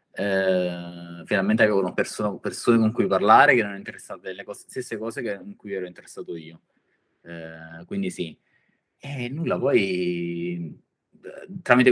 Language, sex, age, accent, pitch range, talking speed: Italian, male, 20-39, native, 85-100 Hz, 140 wpm